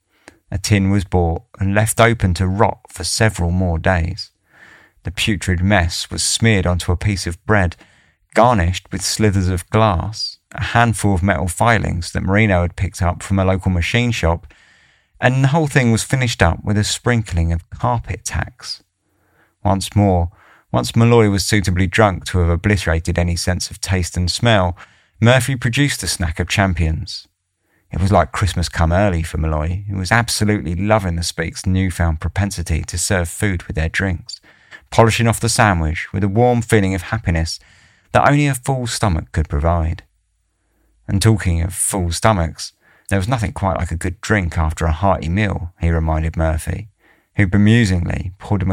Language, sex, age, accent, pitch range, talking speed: English, male, 30-49, British, 85-105 Hz, 175 wpm